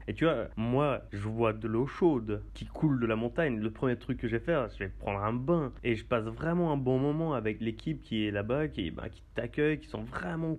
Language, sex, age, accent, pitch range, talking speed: French, male, 30-49, French, 110-145 Hz, 250 wpm